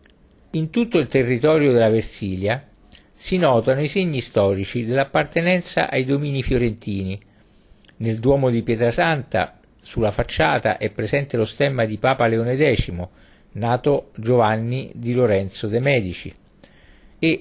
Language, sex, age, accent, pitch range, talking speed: Italian, male, 50-69, native, 105-140 Hz, 125 wpm